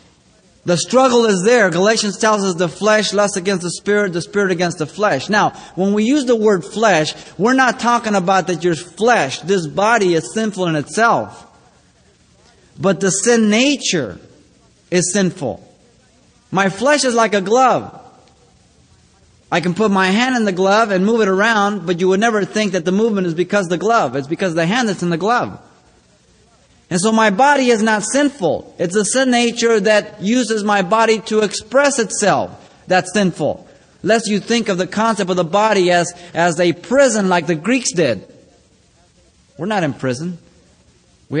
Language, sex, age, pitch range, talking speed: English, male, 30-49, 170-215 Hz, 185 wpm